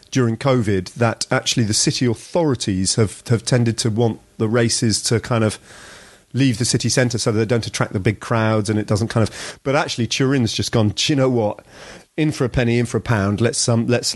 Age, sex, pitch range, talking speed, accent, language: 40-59, male, 110-140 Hz, 230 wpm, British, English